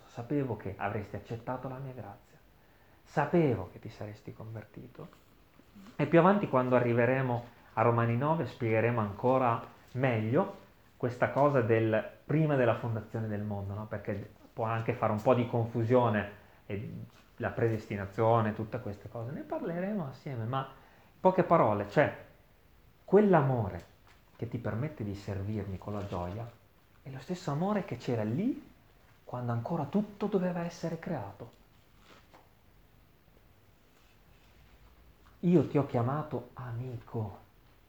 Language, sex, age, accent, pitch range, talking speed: Italian, male, 30-49, native, 105-155 Hz, 130 wpm